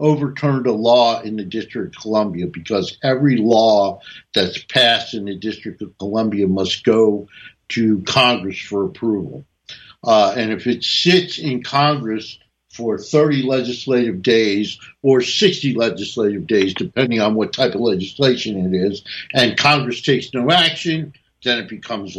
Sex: male